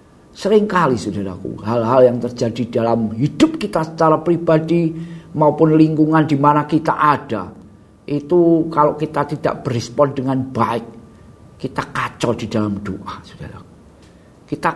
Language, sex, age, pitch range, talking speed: Indonesian, male, 50-69, 125-175 Hz, 120 wpm